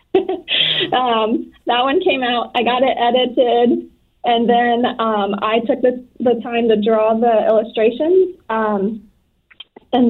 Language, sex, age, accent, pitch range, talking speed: English, female, 20-39, American, 210-240 Hz, 135 wpm